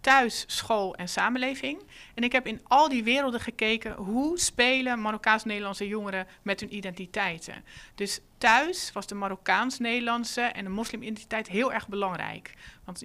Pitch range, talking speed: 190-240 Hz, 145 wpm